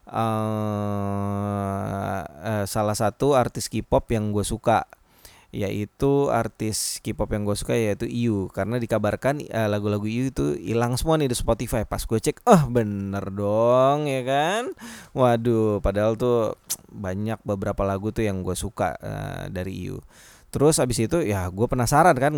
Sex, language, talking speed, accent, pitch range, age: male, Indonesian, 150 wpm, native, 100-135 Hz, 20-39